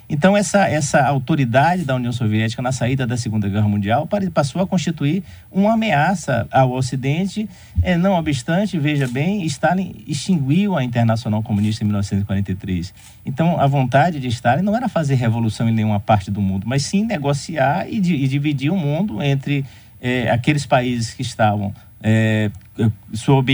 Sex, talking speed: male, 155 wpm